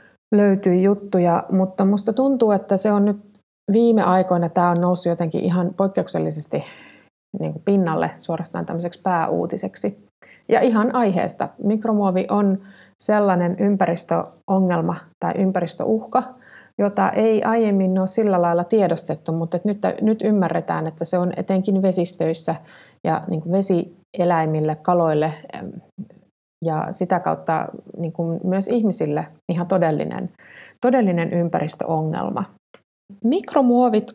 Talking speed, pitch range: 110 wpm, 175-210 Hz